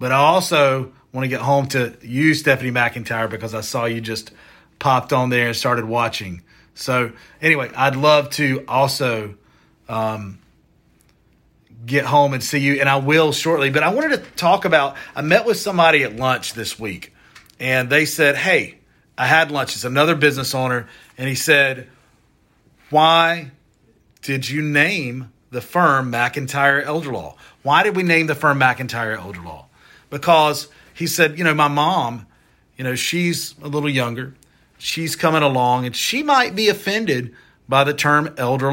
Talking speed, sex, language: 170 wpm, male, English